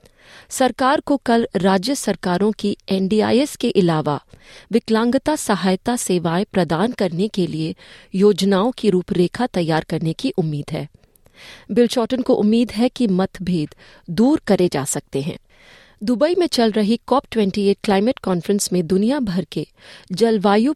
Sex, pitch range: female, 175-230 Hz